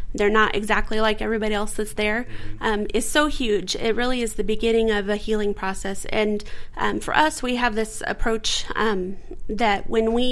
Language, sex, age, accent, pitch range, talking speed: English, female, 30-49, American, 210-230 Hz, 190 wpm